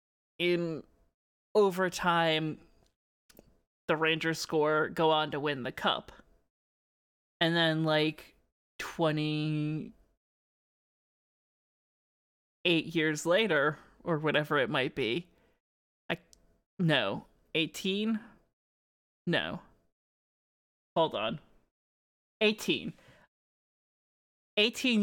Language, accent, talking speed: English, American, 75 wpm